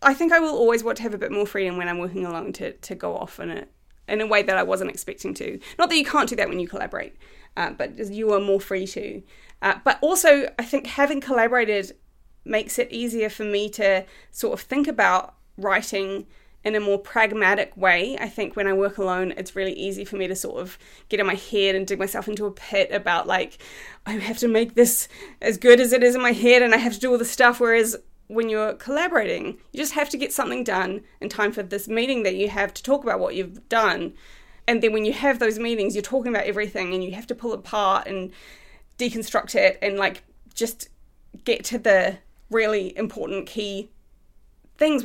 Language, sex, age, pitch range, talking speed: English, female, 20-39, 195-245 Hz, 225 wpm